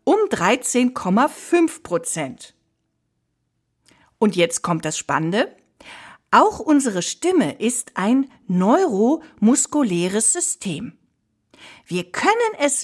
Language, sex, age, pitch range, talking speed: German, female, 50-69, 190-300 Hz, 85 wpm